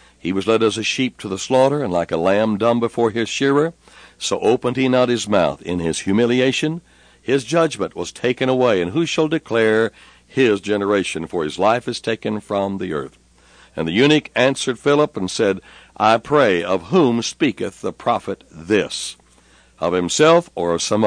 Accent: American